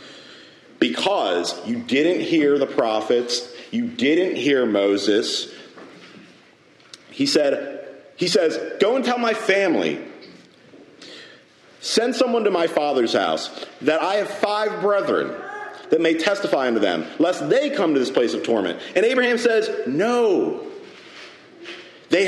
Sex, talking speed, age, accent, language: male, 130 wpm, 40-59, American, English